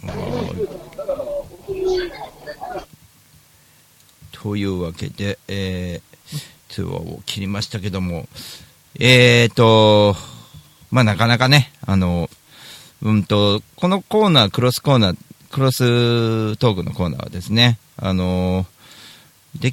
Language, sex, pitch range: Japanese, male, 95-130 Hz